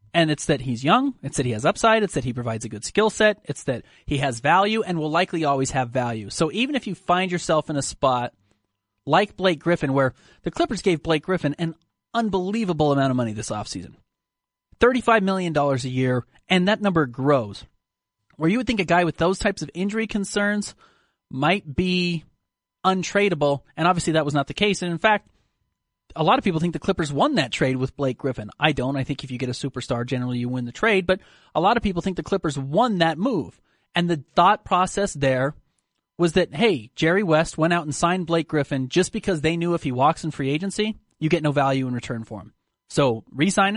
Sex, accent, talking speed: male, American, 220 wpm